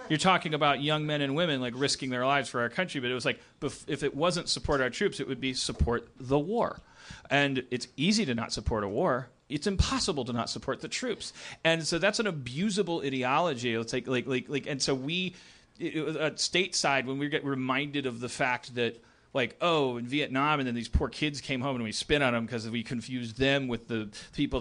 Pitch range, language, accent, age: 125-165 Hz, English, American, 40-59